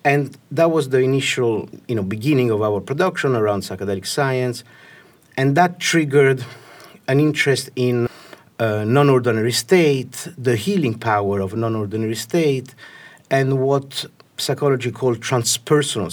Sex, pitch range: male, 110-135 Hz